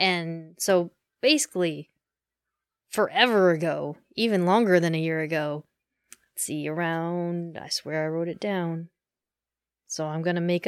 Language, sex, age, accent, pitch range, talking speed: English, female, 20-39, American, 170-210 Hz, 140 wpm